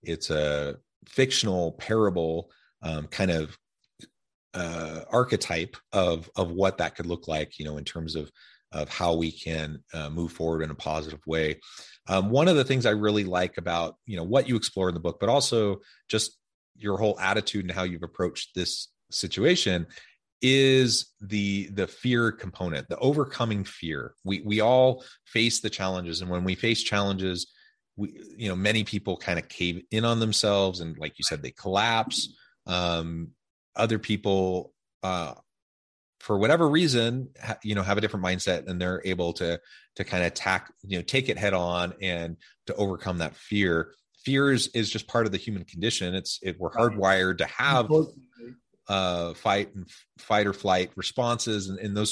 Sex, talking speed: male, 175 wpm